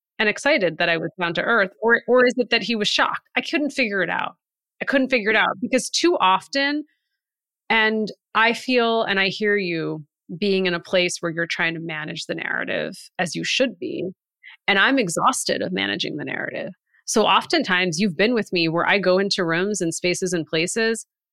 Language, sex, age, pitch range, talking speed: English, female, 30-49, 170-225 Hz, 205 wpm